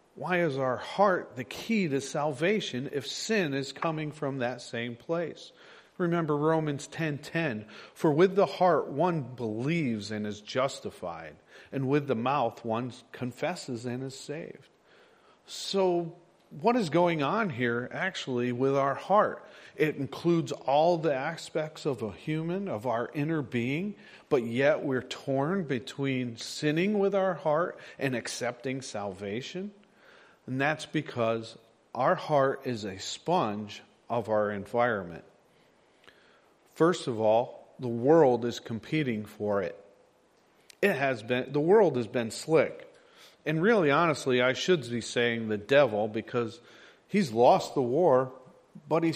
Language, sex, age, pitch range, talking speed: English, male, 40-59, 120-165 Hz, 140 wpm